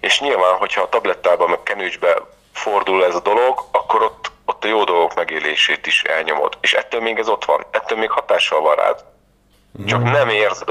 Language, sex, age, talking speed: Hungarian, male, 30-49, 190 wpm